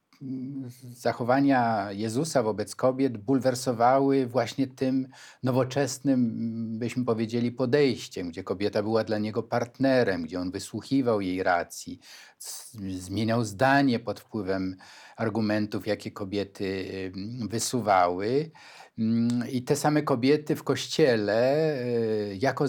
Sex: male